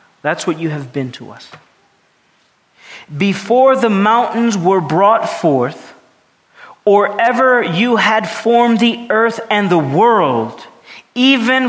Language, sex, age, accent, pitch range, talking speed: English, male, 40-59, American, 145-230 Hz, 125 wpm